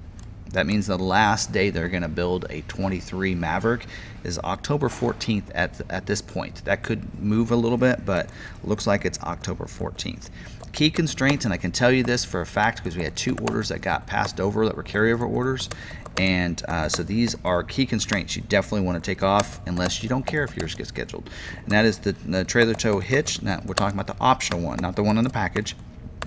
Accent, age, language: American, 40-59, English